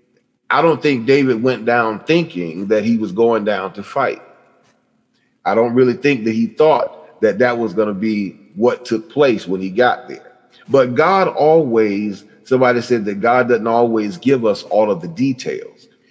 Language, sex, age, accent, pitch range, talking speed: English, male, 40-59, American, 115-150 Hz, 185 wpm